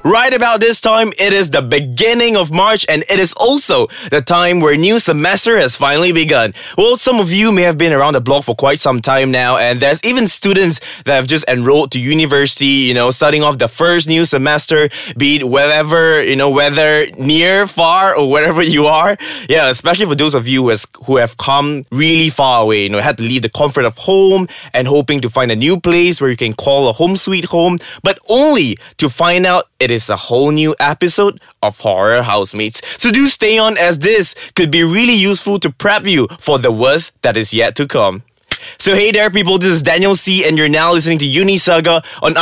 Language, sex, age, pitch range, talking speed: English, male, 20-39, 140-190 Hz, 220 wpm